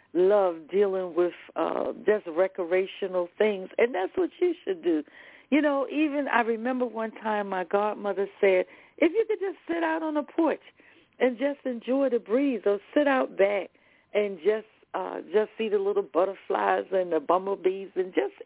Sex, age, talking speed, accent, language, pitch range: female, 60-79, 175 wpm, American, English, 180-245 Hz